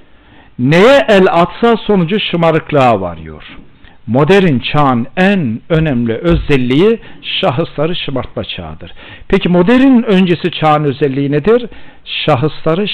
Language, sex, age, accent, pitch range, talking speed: Turkish, male, 60-79, native, 130-195 Hz, 95 wpm